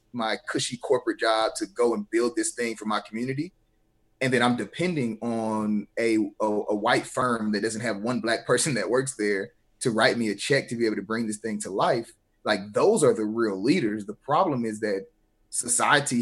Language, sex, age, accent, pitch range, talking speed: English, male, 30-49, American, 105-125 Hz, 210 wpm